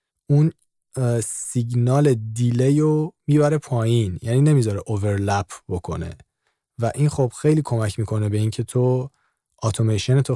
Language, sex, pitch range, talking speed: Persian, male, 105-125 Hz, 120 wpm